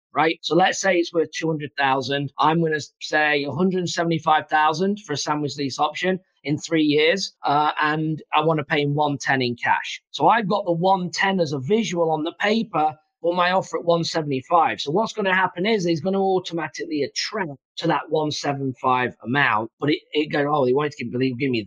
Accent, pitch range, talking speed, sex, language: British, 145-175 Hz, 200 wpm, male, English